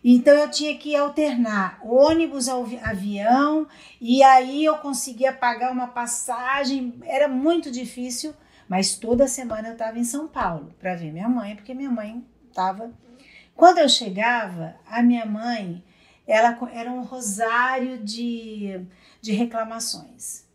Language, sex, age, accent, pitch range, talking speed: Portuguese, female, 50-69, Brazilian, 220-275 Hz, 135 wpm